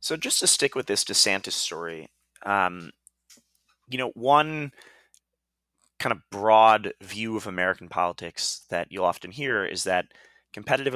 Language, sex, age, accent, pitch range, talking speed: English, male, 30-49, American, 90-115 Hz, 140 wpm